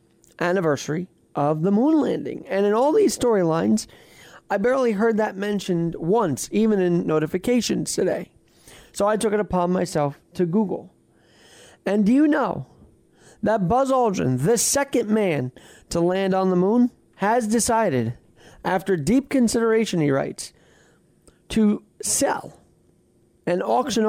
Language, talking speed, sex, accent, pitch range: English, 135 wpm, male, American, 160-220 Hz